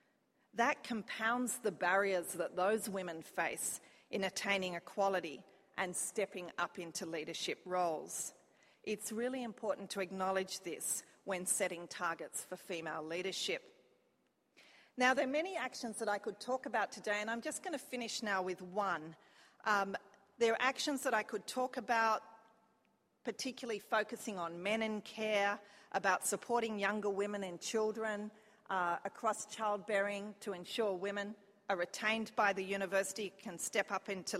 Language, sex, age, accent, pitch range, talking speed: English, female, 40-59, Australian, 190-240 Hz, 150 wpm